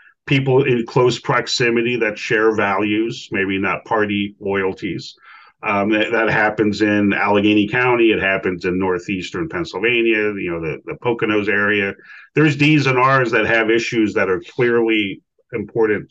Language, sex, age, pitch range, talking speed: English, male, 40-59, 105-125 Hz, 150 wpm